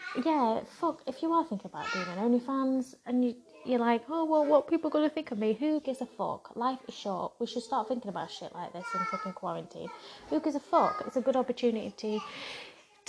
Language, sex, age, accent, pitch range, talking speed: English, female, 20-39, British, 205-300 Hz, 235 wpm